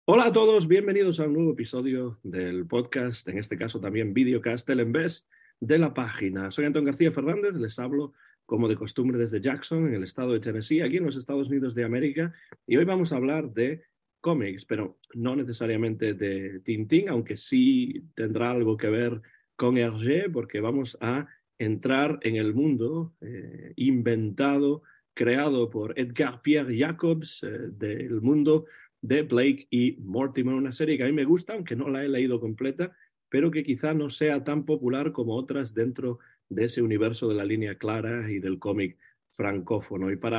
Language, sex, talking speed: Spanish, male, 180 wpm